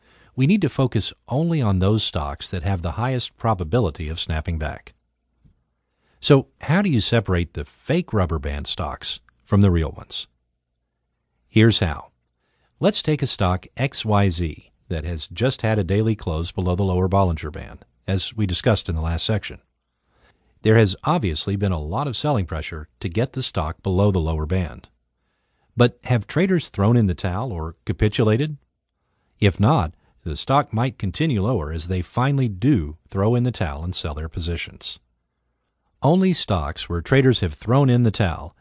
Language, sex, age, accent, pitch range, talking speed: English, male, 50-69, American, 80-115 Hz, 170 wpm